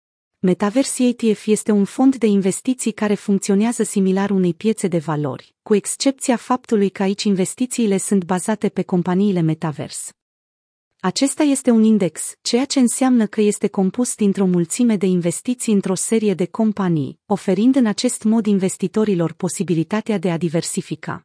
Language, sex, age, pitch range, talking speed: Romanian, female, 30-49, 180-225 Hz, 145 wpm